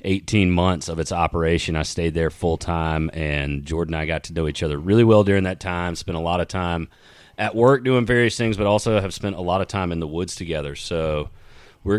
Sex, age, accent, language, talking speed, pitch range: male, 30-49, American, English, 240 wpm, 85-100 Hz